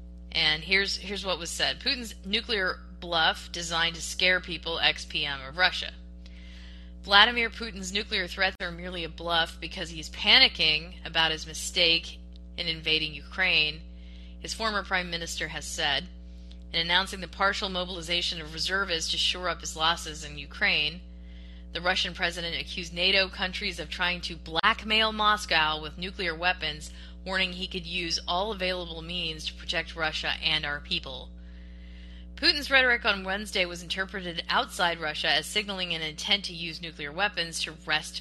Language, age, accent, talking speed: English, 30-49, American, 155 wpm